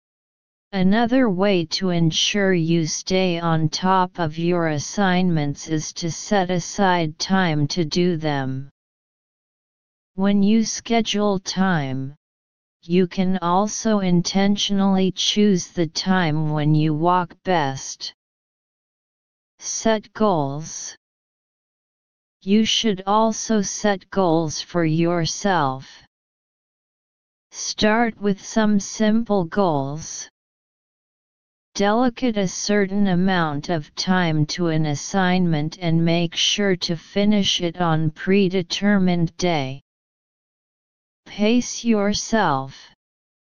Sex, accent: female, American